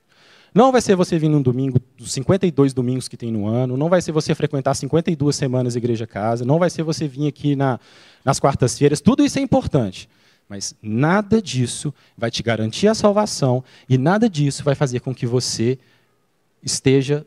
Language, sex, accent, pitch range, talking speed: Portuguese, male, Brazilian, 125-160 Hz, 180 wpm